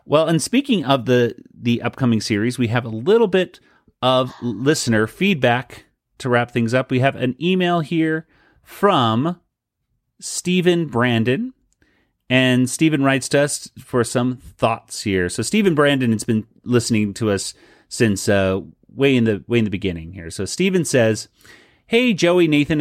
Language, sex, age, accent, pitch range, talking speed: English, male, 30-49, American, 110-145 Hz, 160 wpm